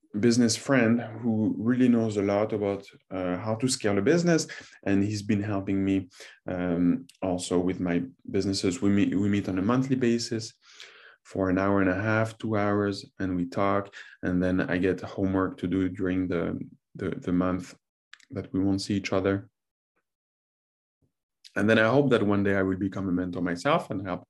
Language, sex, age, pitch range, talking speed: English, male, 20-39, 90-110 Hz, 185 wpm